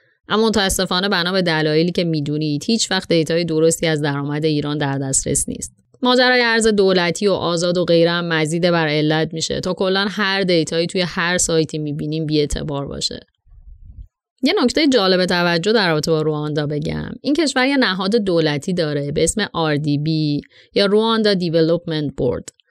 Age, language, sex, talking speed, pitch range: 30-49, Persian, female, 160 wpm, 155-215 Hz